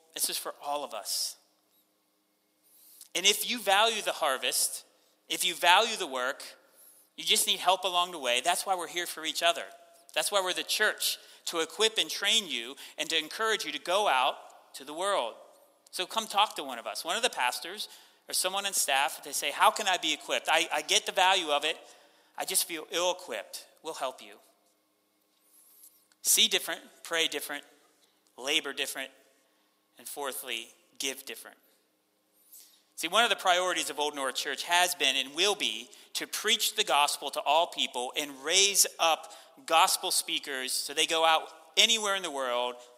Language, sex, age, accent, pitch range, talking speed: English, male, 30-49, American, 130-185 Hz, 185 wpm